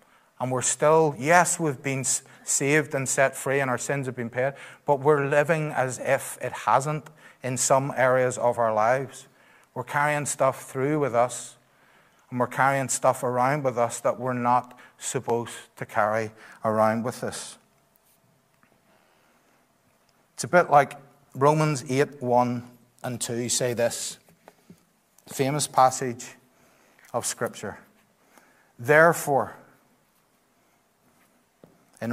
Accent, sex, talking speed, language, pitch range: Irish, male, 125 wpm, English, 125-145 Hz